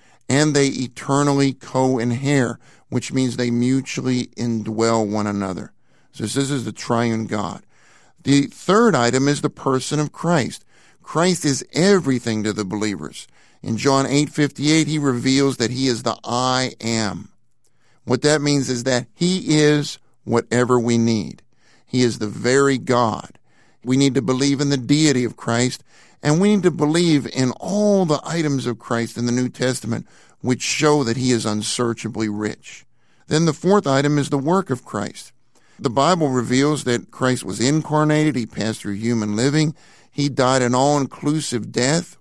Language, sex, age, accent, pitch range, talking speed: English, male, 50-69, American, 120-150 Hz, 165 wpm